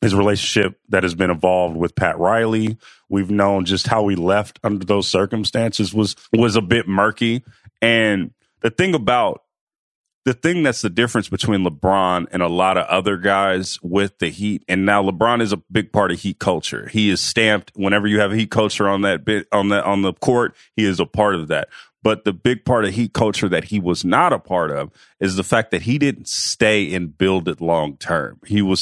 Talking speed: 215 wpm